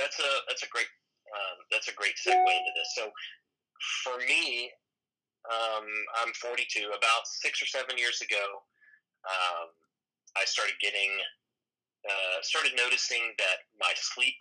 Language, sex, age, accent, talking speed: English, male, 30-49, American, 145 wpm